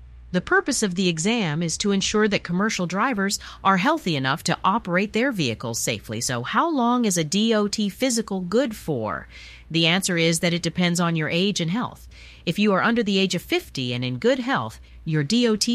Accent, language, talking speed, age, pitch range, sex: American, English, 200 wpm, 40-59, 150-230 Hz, female